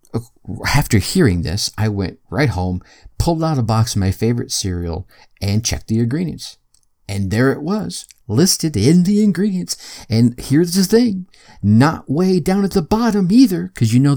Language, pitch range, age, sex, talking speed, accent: English, 100-140 Hz, 50-69, male, 175 wpm, American